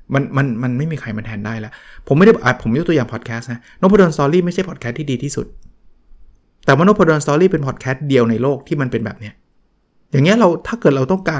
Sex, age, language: male, 20-39, Thai